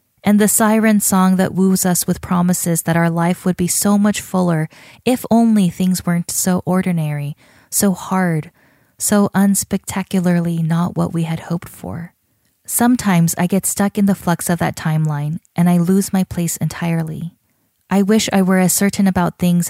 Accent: American